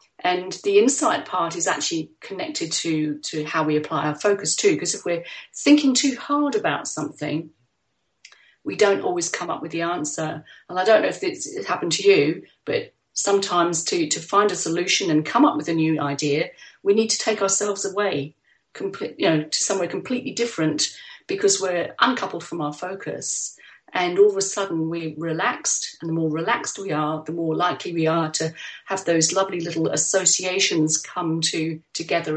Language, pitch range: English, 155-205 Hz